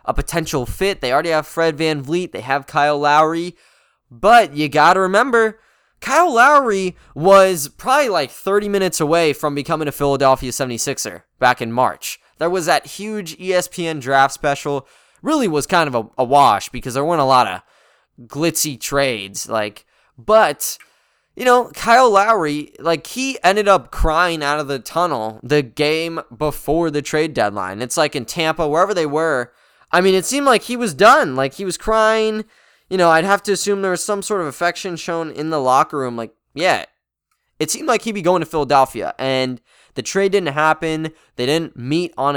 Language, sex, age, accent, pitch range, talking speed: English, male, 10-29, American, 140-185 Hz, 185 wpm